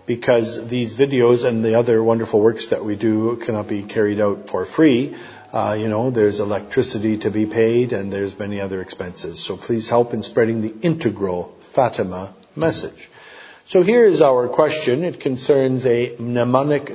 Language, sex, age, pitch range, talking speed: English, male, 50-69, 110-140 Hz, 170 wpm